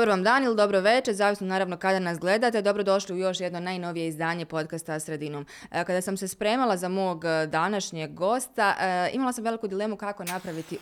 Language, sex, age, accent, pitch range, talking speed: Croatian, female, 20-39, native, 175-225 Hz, 190 wpm